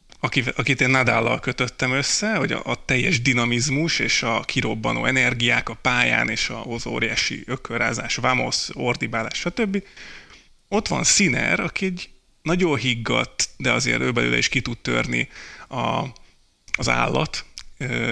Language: Hungarian